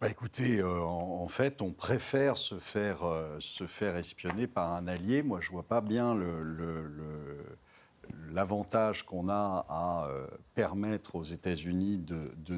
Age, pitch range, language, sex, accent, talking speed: 60-79, 85-105 Hz, French, male, French, 170 wpm